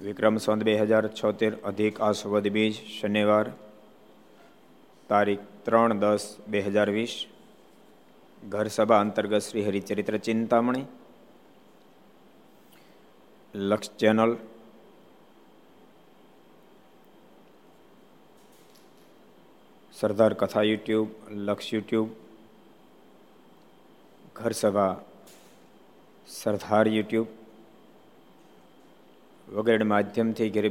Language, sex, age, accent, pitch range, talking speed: Gujarati, male, 50-69, native, 100-110 Hz, 65 wpm